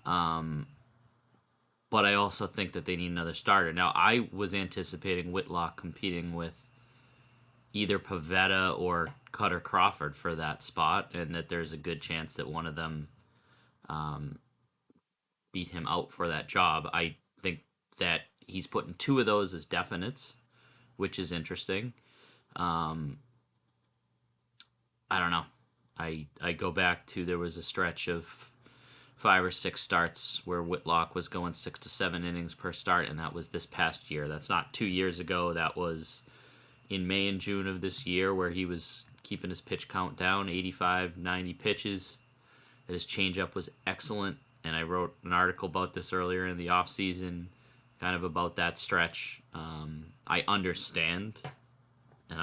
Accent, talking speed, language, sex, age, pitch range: American, 160 wpm, English, male, 30-49, 85-100 Hz